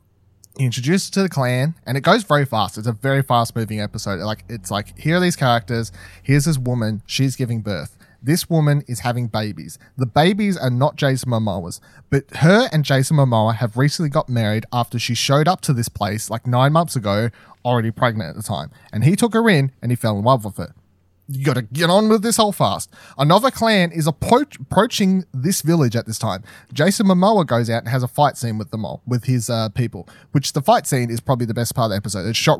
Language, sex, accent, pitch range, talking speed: English, male, Australian, 115-155 Hz, 230 wpm